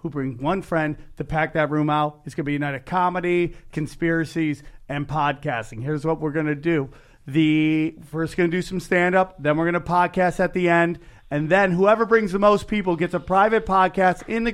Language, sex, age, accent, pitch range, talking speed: English, male, 40-59, American, 150-190 Hz, 220 wpm